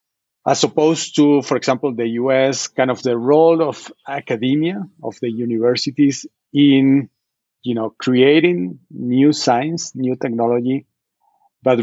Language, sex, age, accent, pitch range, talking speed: English, male, 40-59, Mexican, 115-135 Hz, 125 wpm